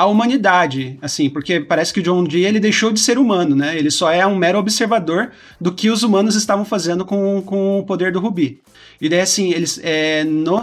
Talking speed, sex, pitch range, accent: 220 wpm, male, 155-200 Hz, Brazilian